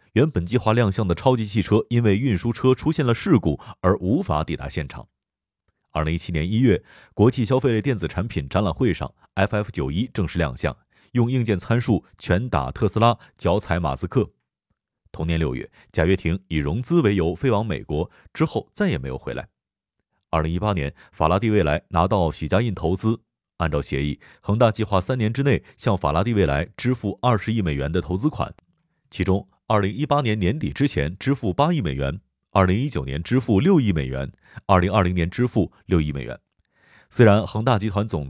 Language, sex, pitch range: Chinese, male, 85-115 Hz